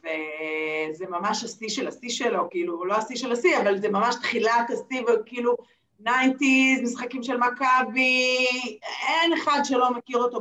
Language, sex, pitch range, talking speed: Hebrew, female, 195-260 Hz, 150 wpm